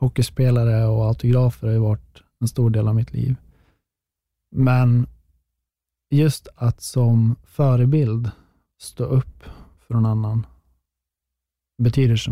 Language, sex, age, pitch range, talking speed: English, male, 20-39, 110-125 Hz, 115 wpm